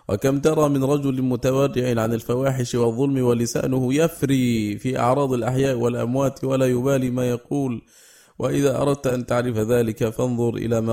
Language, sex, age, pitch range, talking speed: Arabic, male, 20-39, 115-130 Hz, 145 wpm